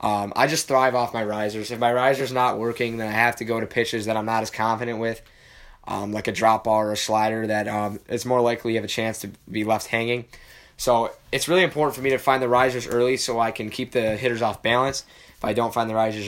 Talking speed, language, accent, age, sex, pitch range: 260 wpm, English, American, 10-29, male, 110-130 Hz